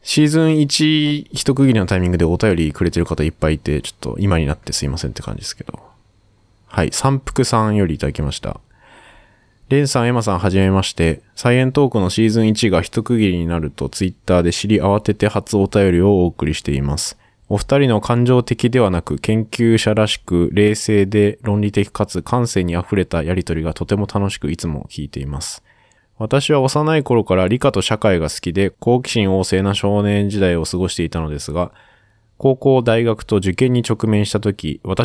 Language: Japanese